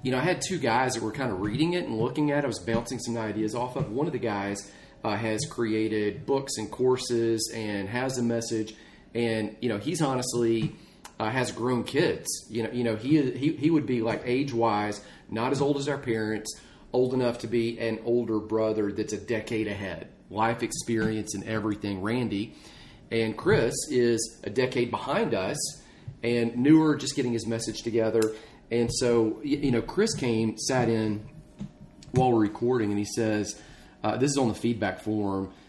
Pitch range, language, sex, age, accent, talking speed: 110-130 Hz, English, male, 40-59, American, 195 wpm